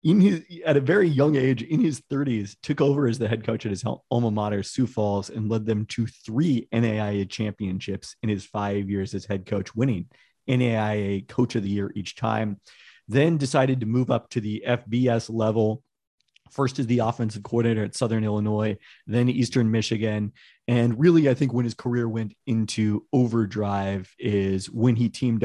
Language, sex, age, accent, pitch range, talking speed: English, male, 30-49, American, 105-135 Hz, 185 wpm